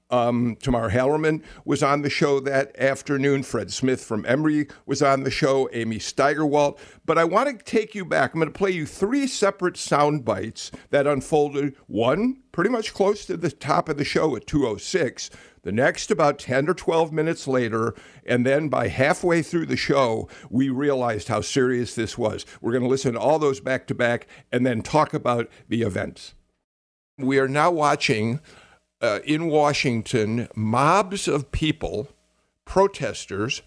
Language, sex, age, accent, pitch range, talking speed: English, male, 50-69, American, 120-155 Hz, 170 wpm